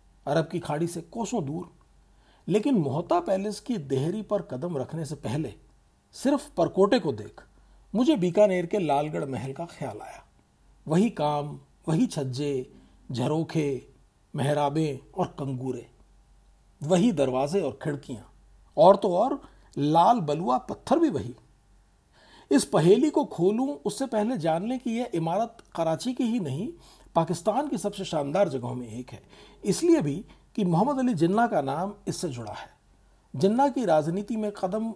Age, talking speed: 50-69, 150 wpm